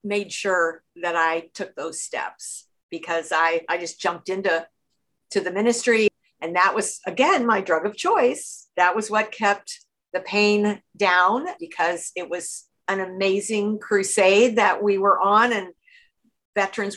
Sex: female